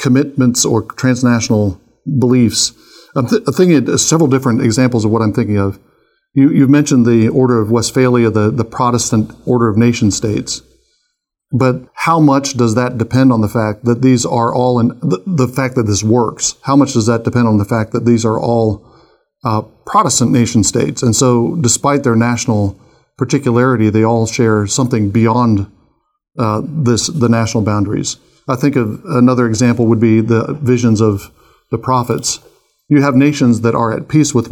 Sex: male